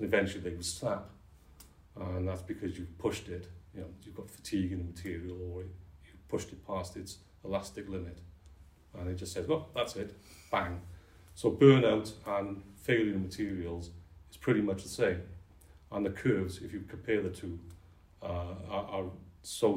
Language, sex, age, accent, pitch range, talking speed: English, male, 40-59, British, 85-100 Hz, 175 wpm